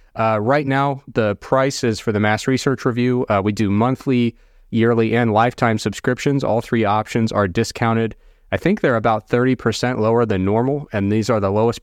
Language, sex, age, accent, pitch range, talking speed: English, male, 30-49, American, 105-130 Hz, 190 wpm